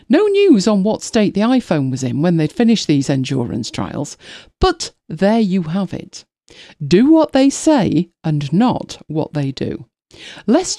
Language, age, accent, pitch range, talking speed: English, 40-59, British, 150-235 Hz, 165 wpm